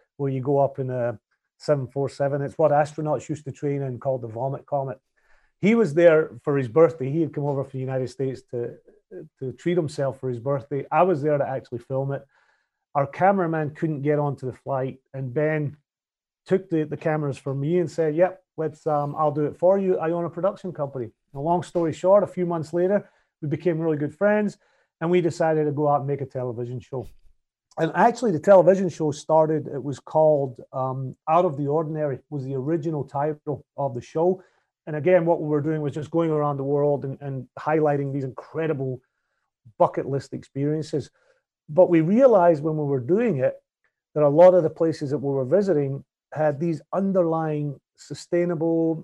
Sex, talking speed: male, 200 wpm